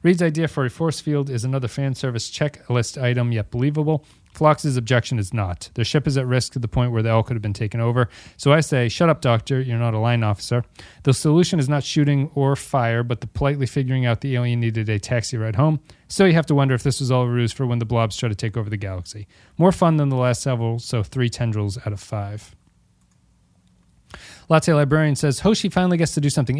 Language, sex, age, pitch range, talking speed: English, male, 30-49, 115-140 Hz, 240 wpm